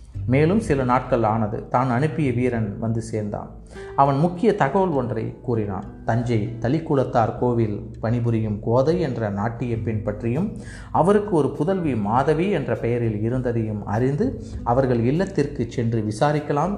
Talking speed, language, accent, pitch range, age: 130 wpm, Tamil, native, 110-140 Hz, 30-49